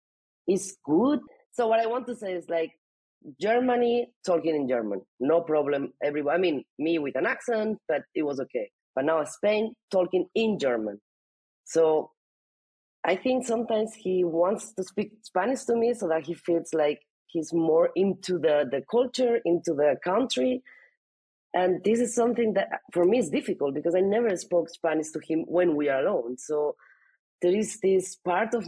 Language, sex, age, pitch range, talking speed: English, female, 30-49, 155-210 Hz, 175 wpm